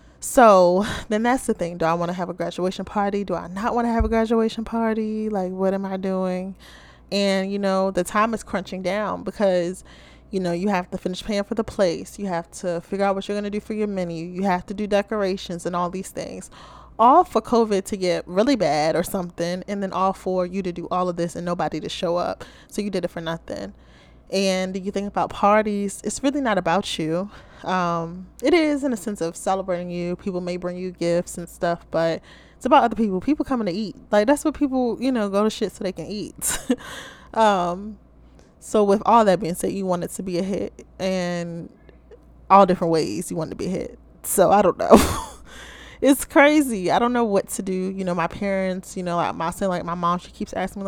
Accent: American